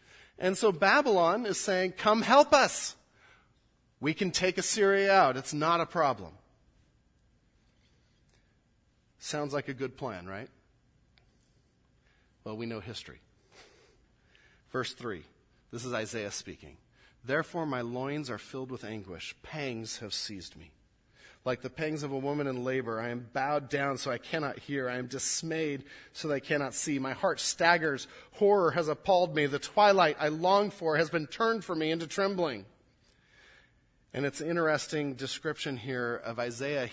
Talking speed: 155 wpm